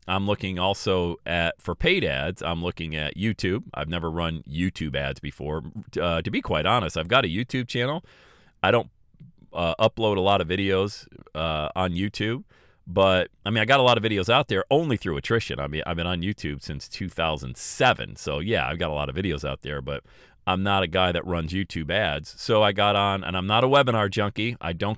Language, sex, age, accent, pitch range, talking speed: English, male, 40-59, American, 85-115 Hz, 220 wpm